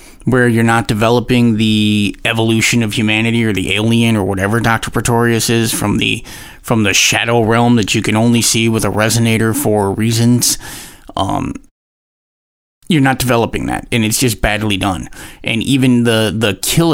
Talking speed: 165 wpm